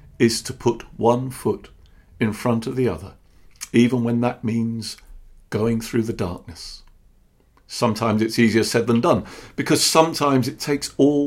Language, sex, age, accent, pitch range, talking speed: English, male, 50-69, British, 115-140 Hz, 155 wpm